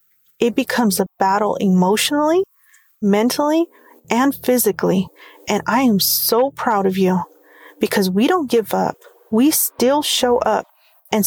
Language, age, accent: English, 40-59, American